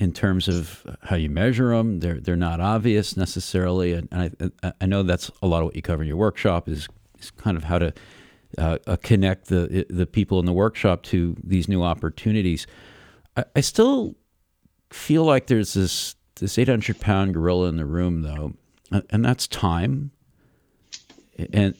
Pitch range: 85-110 Hz